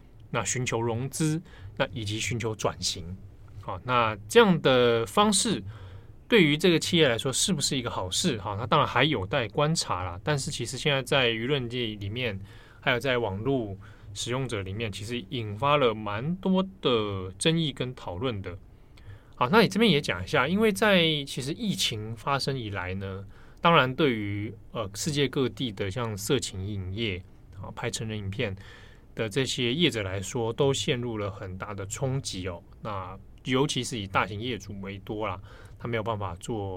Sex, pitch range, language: male, 100-135 Hz, Chinese